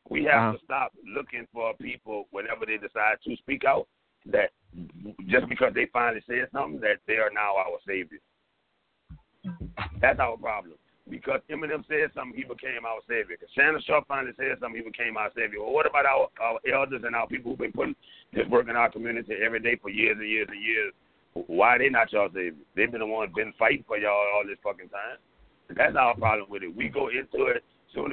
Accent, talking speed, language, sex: American, 215 wpm, English, male